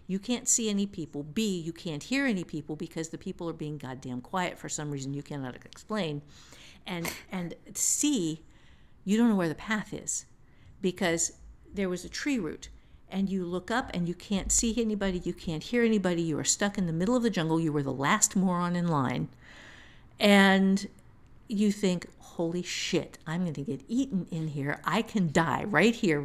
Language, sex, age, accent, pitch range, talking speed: English, female, 50-69, American, 165-215 Hz, 195 wpm